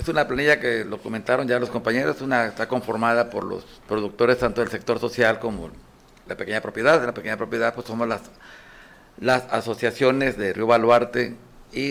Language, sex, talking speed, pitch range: Spanish, male, 180 wpm, 115-145 Hz